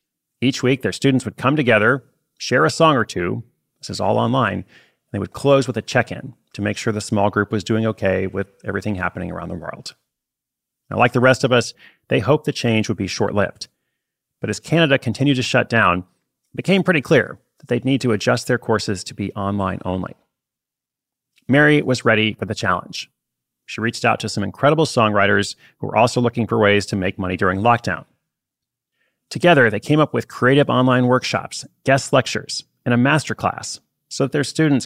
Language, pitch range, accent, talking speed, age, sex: English, 100-130 Hz, American, 200 wpm, 30-49, male